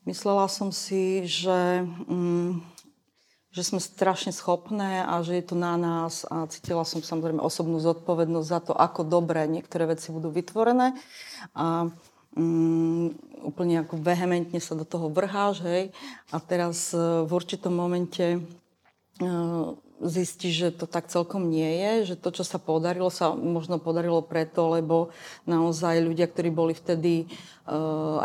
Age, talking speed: 40-59, 145 wpm